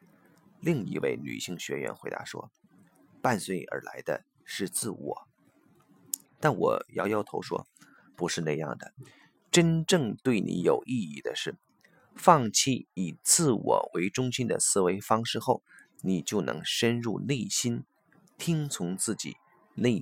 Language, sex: Chinese, male